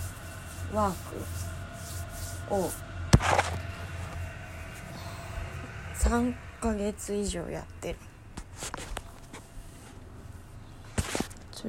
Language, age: Japanese, 20-39